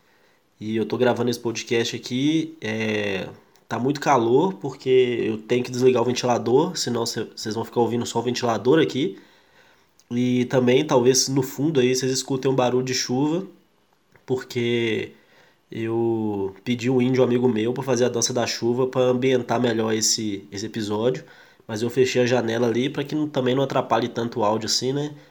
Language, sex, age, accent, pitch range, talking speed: Portuguese, male, 20-39, Brazilian, 115-135 Hz, 180 wpm